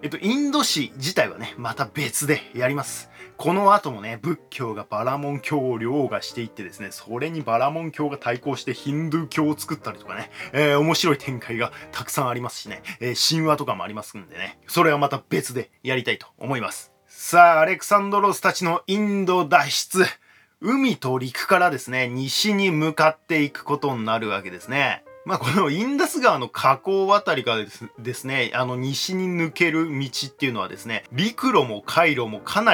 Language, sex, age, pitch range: Japanese, male, 20-39, 125-195 Hz